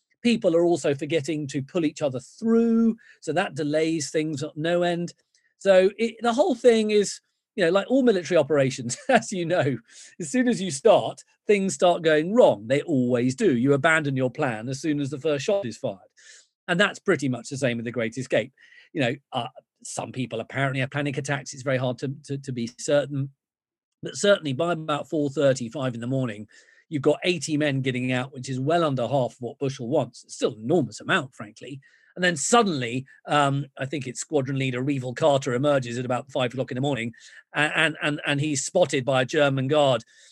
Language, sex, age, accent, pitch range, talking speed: English, male, 40-59, British, 135-170 Hz, 205 wpm